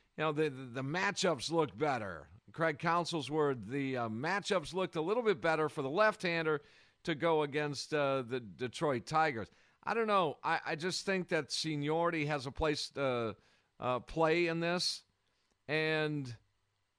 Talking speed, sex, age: 175 wpm, male, 50-69